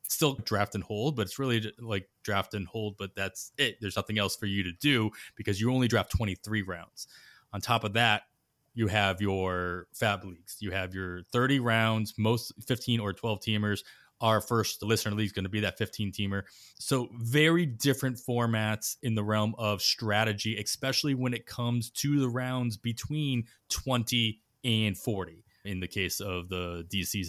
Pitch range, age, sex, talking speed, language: 100-120 Hz, 20-39, male, 185 wpm, English